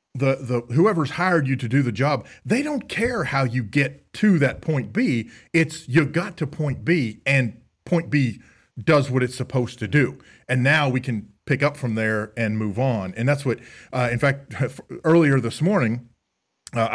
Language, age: English, 40-59